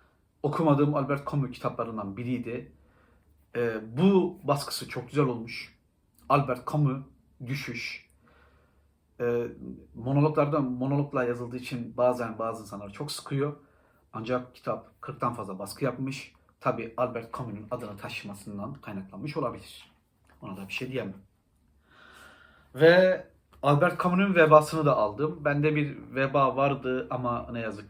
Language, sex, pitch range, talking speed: Turkish, male, 115-150 Hz, 120 wpm